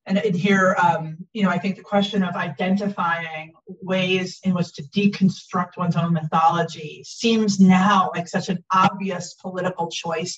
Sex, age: female, 30-49